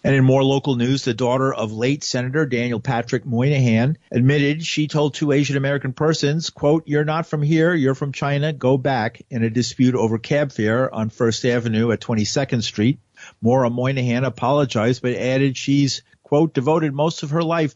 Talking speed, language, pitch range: 180 wpm, English, 115-145 Hz